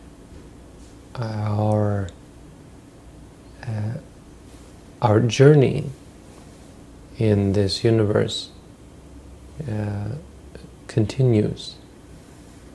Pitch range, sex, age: 105-125 Hz, male, 40-59